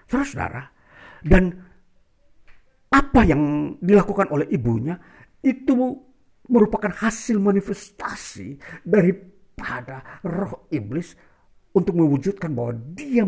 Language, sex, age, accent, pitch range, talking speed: Indonesian, male, 50-69, native, 120-175 Hz, 75 wpm